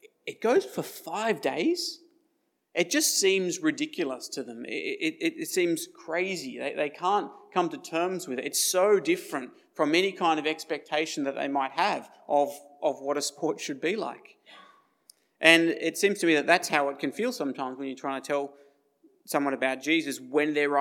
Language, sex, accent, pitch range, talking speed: English, male, Australian, 140-215 Hz, 190 wpm